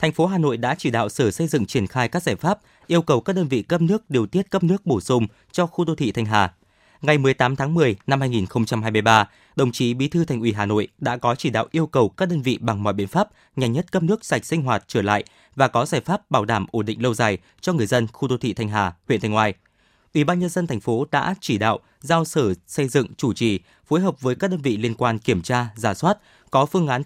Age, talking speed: 20-39, 270 wpm